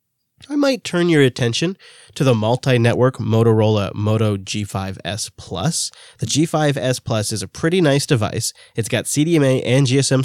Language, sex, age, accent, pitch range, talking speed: English, male, 20-39, American, 110-140 Hz, 145 wpm